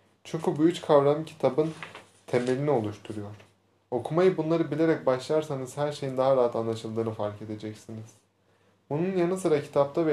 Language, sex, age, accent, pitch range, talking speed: Turkish, male, 20-39, native, 110-145 Hz, 135 wpm